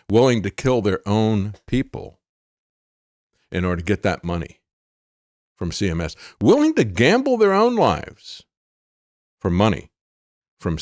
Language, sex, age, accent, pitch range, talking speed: English, male, 50-69, American, 85-115 Hz, 130 wpm